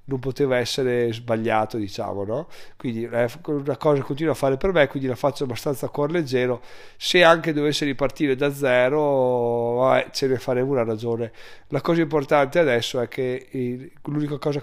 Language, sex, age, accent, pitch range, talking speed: Italian, male, 30-49, native, 120-150 Hz, 170 wpm